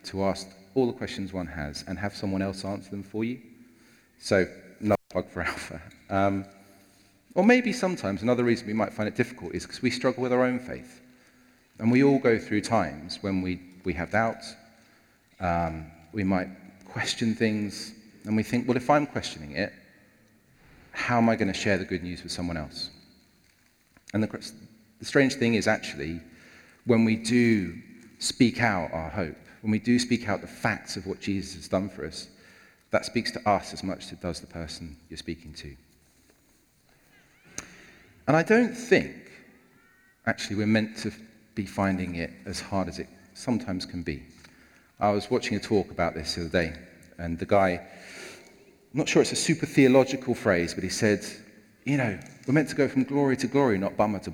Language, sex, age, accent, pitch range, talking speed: English, male, 40-59, British, 90-120 Hz, 190 wpm